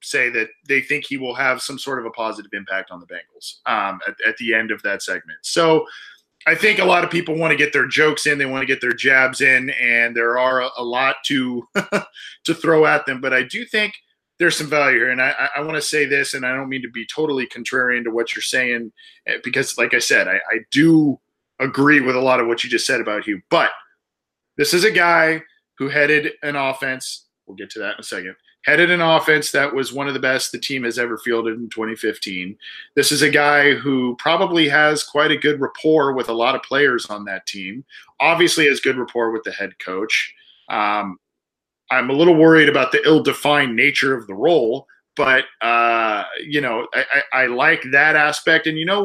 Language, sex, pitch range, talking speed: English, male, 125-155 Hz, 225 wpm